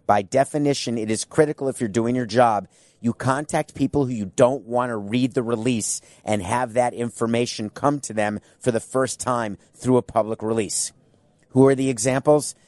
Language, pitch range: English, 120-150 Hz